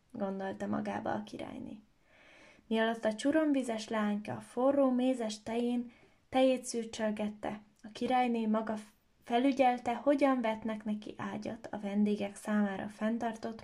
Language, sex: Hungarian, female